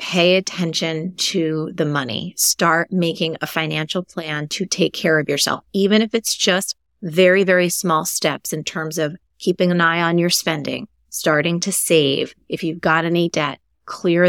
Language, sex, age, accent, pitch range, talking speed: English, female, 30-49, American, 155-185 Hz, 170 wpm